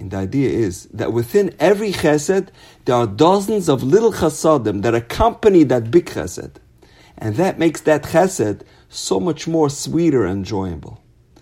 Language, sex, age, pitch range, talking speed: English, male, 50-69, 110-165 Hz, 150 wpm